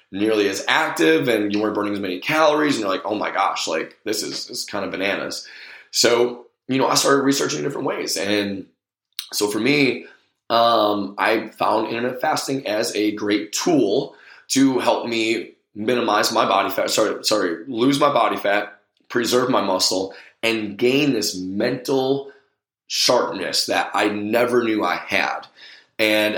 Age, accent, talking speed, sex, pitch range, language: 20-39, American, 165 wpm, male, 95-115 Hz, English